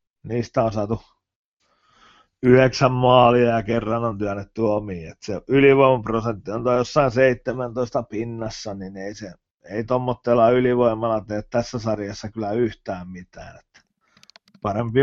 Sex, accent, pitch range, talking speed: male, native, 110-155 Hz, 125 wpm